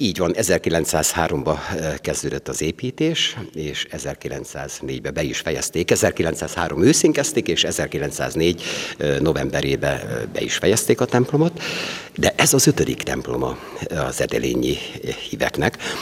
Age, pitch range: 60-79, 75-115 Hz